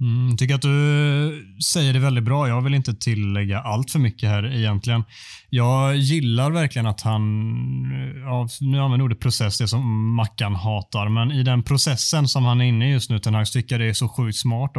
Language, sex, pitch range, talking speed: Swedish, male, 105-125 Hz, 205 wpm